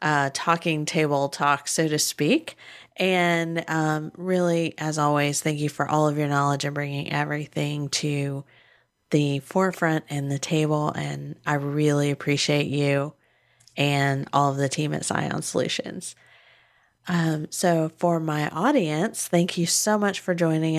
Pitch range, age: 145-170 Hz, 30-49